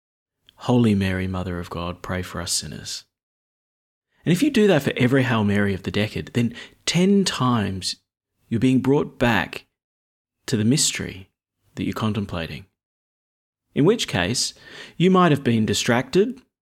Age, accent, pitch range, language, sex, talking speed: 30-49, Australian, 95-130 Hz, English, male, 150 wpm